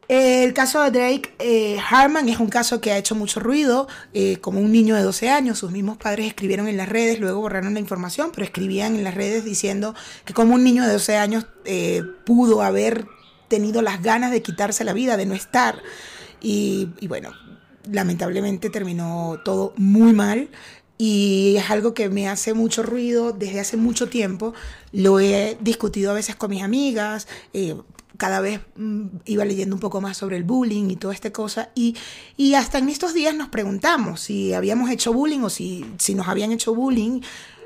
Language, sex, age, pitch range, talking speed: Spanish, female, 30-49, 190-225 Hz, 190 wpm